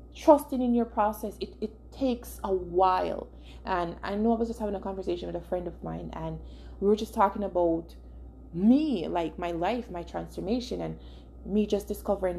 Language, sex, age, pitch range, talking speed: English, female, 20-39, 175-215 Hz, 190 wpm